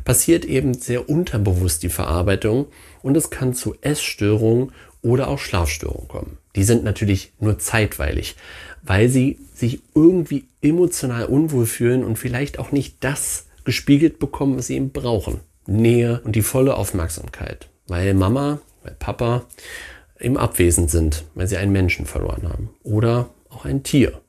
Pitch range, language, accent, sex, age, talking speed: 100-130 Hz, German, German, male, 40-59, 150 wpm